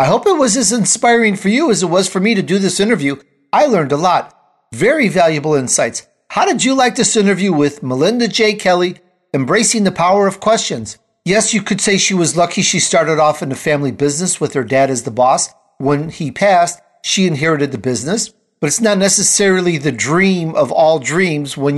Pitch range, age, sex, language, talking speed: 150-210 Hz, 50-69, male, English, 210 wpm